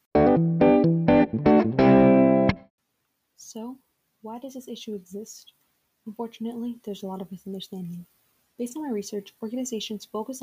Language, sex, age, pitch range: English, female, 20-39, 195-230 Hz